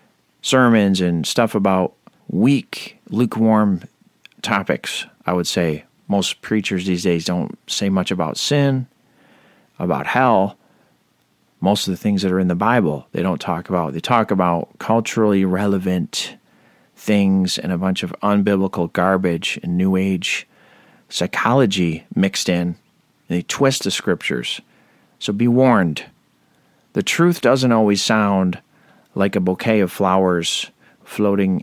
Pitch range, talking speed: 90-105 Hz, 135 wpm